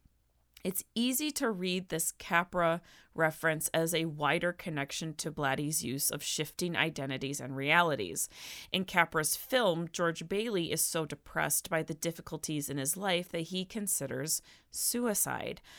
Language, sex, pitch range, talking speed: English, female, 150-185 Hz, 140 wpm